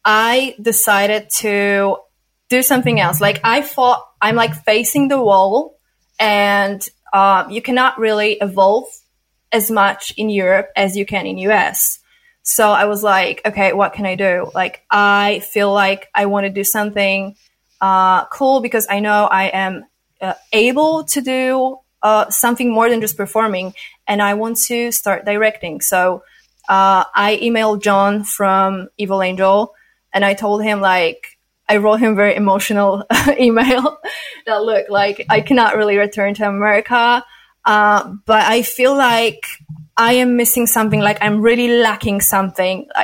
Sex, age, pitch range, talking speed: female, 20-39, 200-230 Hz, 160 wpm